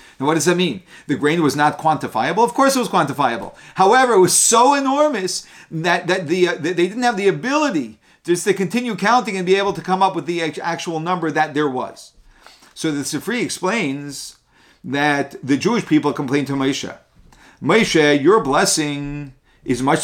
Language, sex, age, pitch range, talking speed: English, male, 40-59, 140-195 Hz, 185 wpm